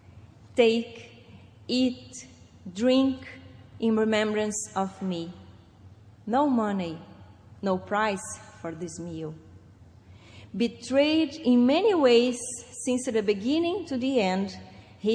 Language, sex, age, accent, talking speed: English, female, 30-49, Brazilian, 100 wpm